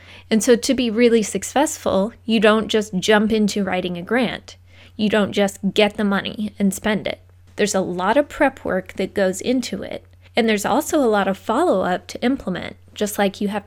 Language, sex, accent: English, female, American